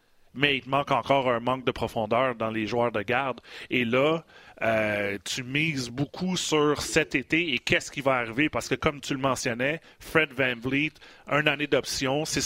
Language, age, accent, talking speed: French, 30-49, Canadian, 195 wpm